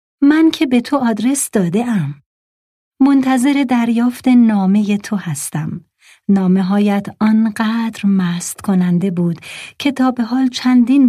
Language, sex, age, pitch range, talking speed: Persian, female, 40-59, 170-235 Hz, 125 wpm